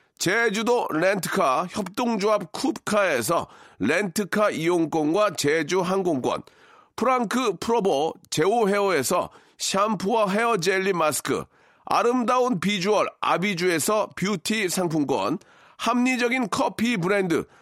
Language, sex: Korean, male